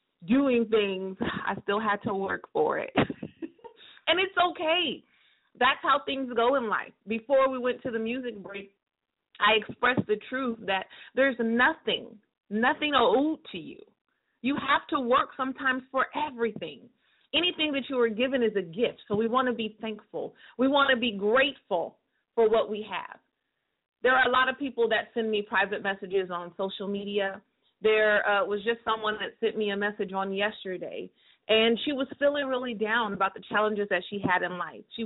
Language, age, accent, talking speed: English, 30-49, American, 185 wpm